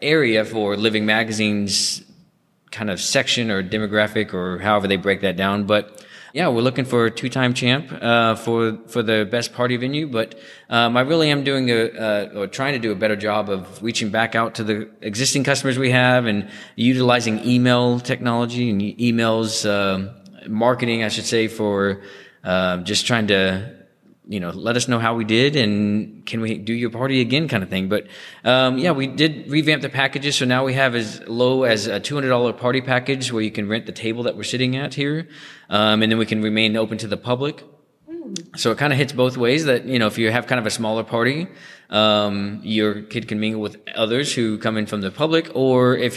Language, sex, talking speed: English, male, 210 wpm